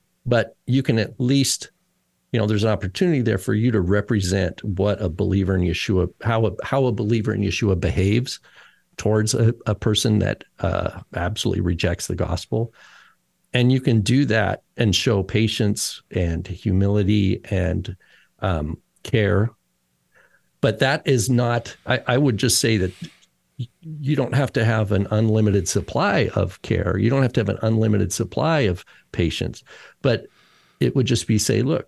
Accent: American